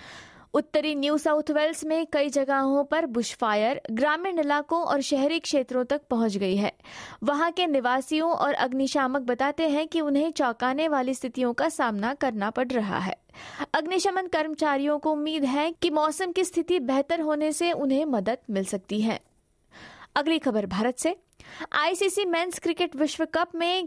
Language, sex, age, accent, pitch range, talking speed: Hindi, female, 20-39, native, 235-310 Hz, 160 wpm